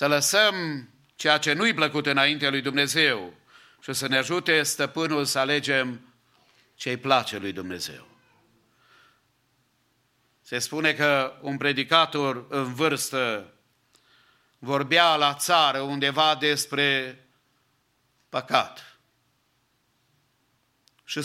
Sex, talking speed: male, 95 wpm